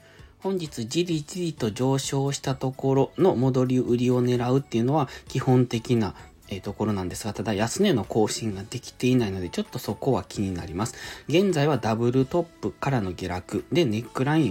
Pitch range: 100-135 Hz